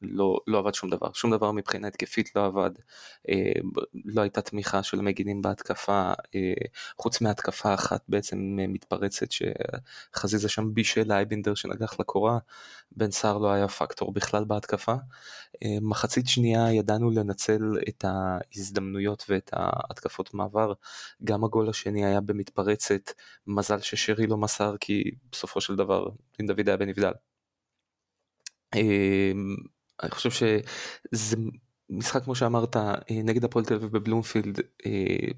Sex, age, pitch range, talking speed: male, 20-39, 100-115 Hz, 125 wpm